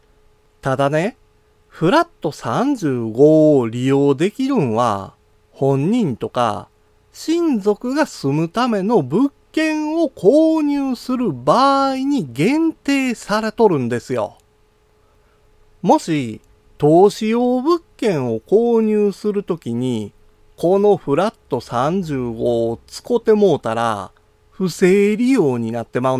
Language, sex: Japanese, male